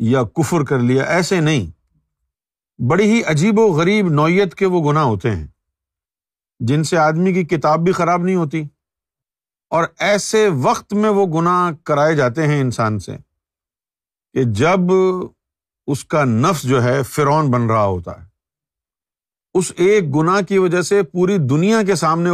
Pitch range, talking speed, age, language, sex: 120-165 Hz, 160 wpm, 50-69, Urdu, male